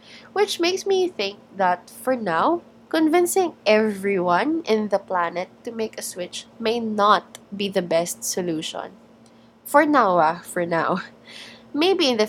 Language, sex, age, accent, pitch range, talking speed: English, female, 20-39, Filipino, 175-230 Hz, 145 wpm